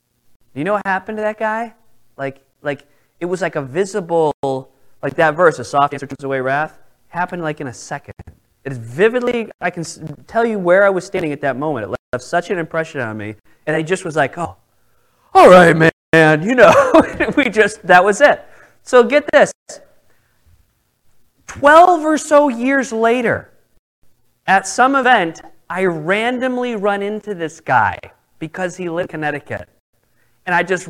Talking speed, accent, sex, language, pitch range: 175 wpm, American, male, English, 145-225 Hz